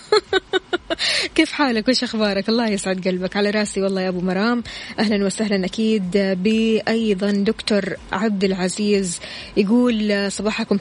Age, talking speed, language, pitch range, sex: 20-39, 120 wpm, Arabic, 195-235 Hz, female